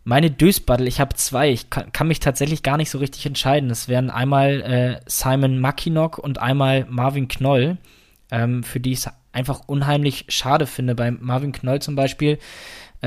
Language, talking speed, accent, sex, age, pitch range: German, 185 wpm, German, male, 20-39, 125-145 Hz